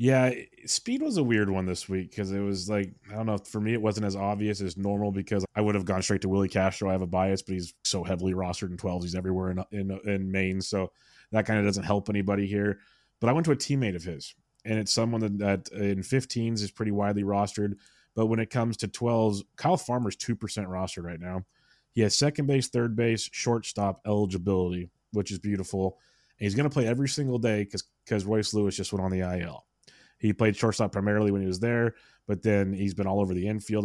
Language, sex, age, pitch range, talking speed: English, male, 20-39, 100-115 Hz, 235 wpm